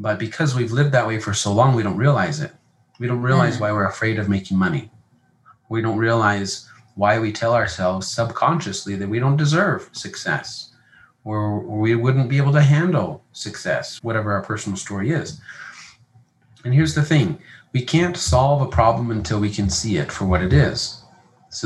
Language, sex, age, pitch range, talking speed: English, male, 30-49, 105-145 Hz, 185 wpm